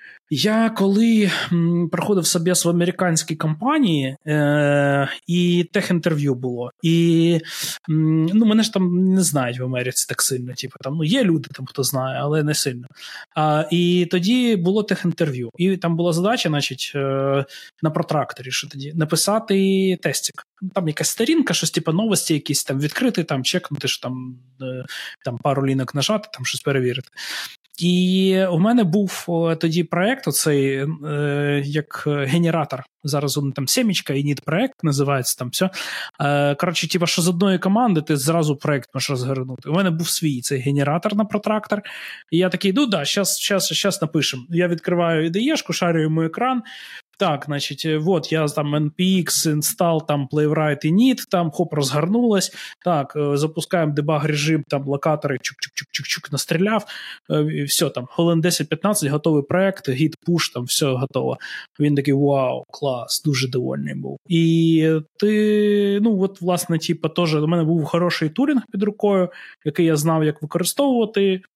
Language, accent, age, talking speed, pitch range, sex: Ukrainian, native, 20-39, 155 wpm, 145-185 Hz, male